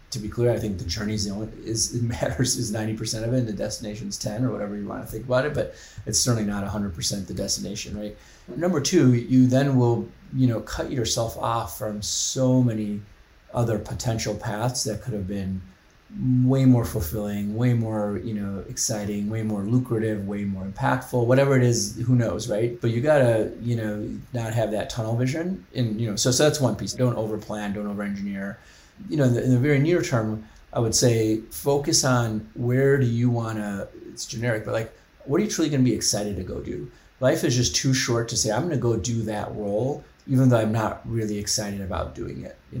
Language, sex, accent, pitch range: English, male, American, 105-130 Hz